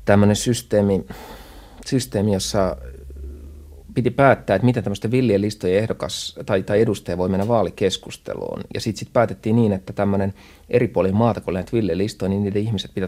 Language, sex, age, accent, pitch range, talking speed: Finnish, male, 30-49, native, 90-105 Hz, 145 wpm